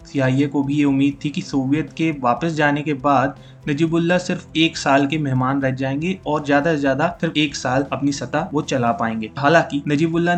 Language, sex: Hindi, male